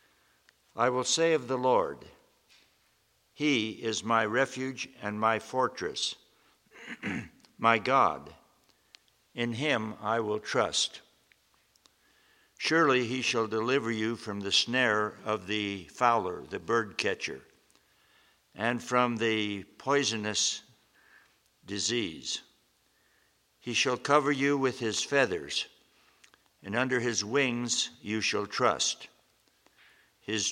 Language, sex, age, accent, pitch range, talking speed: English, male, 60-79, American, 105-125 Hz, 105 wpm